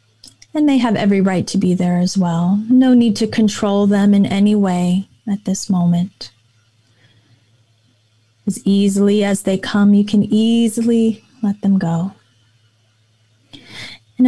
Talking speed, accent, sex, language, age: 140 wpm, American, female, English, 30-49